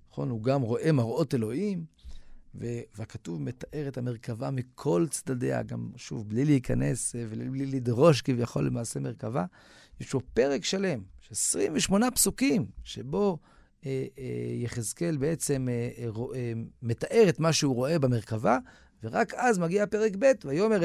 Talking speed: 140 wpm